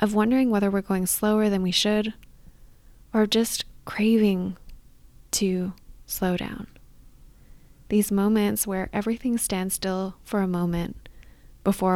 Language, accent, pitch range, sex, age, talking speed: English, American, 180-210 Hz, female, 20-39, 125 wpm